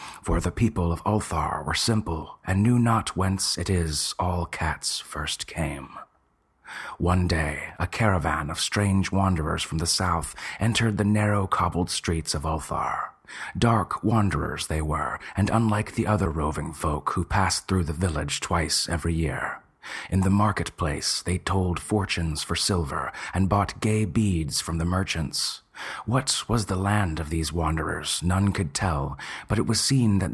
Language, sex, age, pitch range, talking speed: English, male, 30-49, 80-100 Hz, 160 wpm